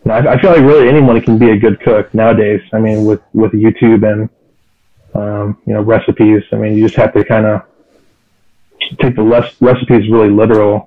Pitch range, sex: 105-120 Hz, male